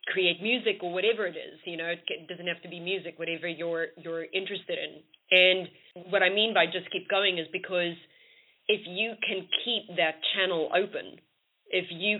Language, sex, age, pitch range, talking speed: English, female, 30-49, 165-195 Hz, 185 wpm